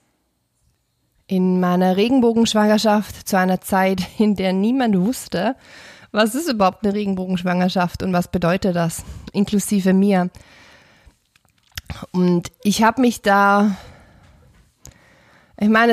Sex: female